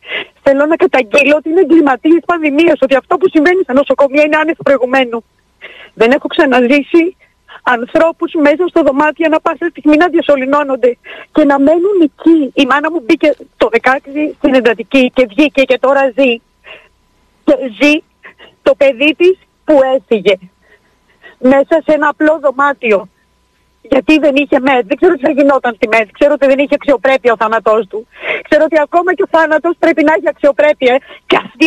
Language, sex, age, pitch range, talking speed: Greek, female, 40-59, 260-320 Hz, 170 wpm